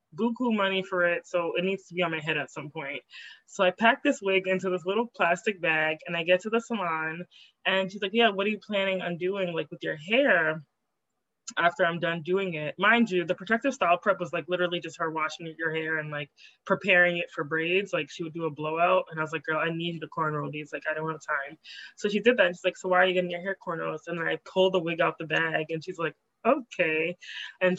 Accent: American